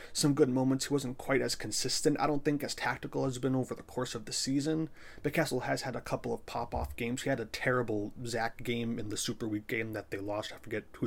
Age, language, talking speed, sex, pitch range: 30-49, English, 255 wpm, male, 110-135 Hz